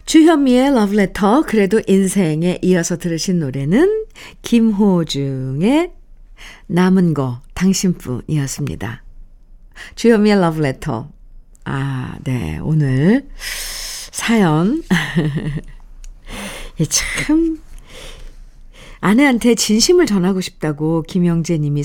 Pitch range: 165-225 Hz